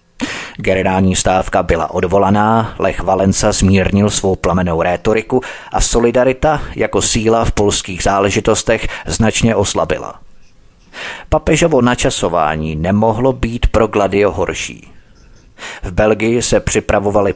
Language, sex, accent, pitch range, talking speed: Czech, male, native, 95-120 Hz, 105 wpm